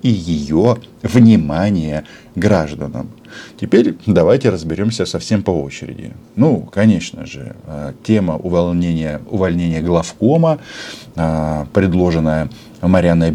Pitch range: 80-110 Hz